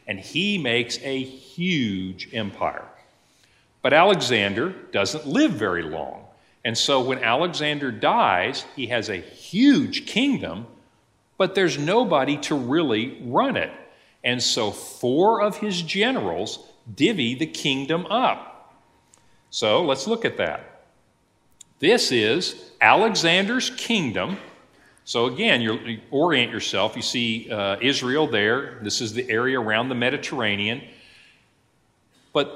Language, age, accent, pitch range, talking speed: English, 50-69, American, 120-185 Hz, 120 wpm